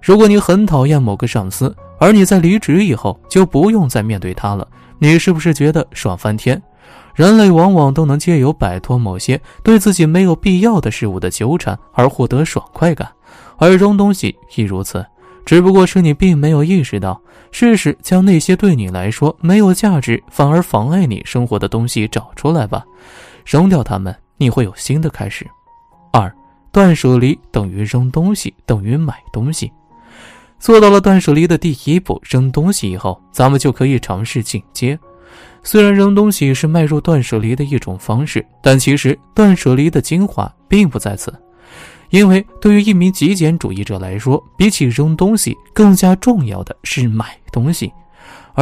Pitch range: 115-180 Hz